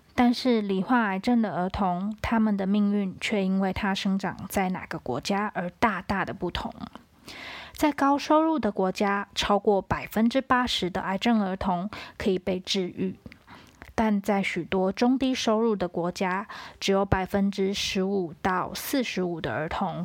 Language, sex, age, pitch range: Chinese, female, 20-39, 190-220 Hz